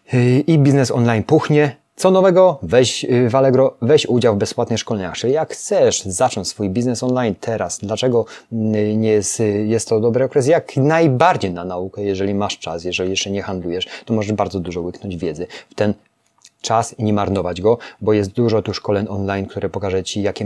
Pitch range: 100-125 Hz